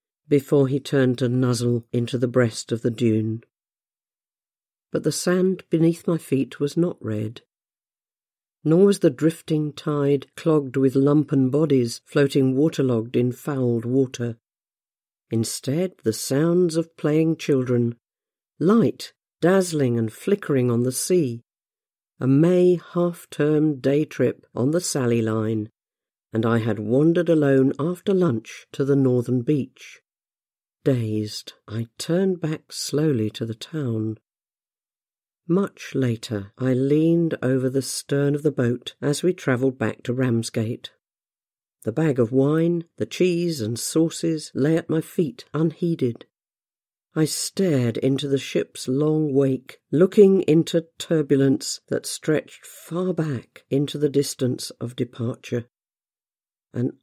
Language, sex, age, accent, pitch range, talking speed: English, female, 50-69, British, 120-160 Hz, 130 wpm